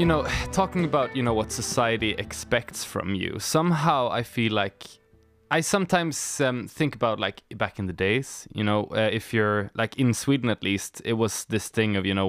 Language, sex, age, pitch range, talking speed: Swedish, male, 20-39, 100-130 Hz, 205 wpm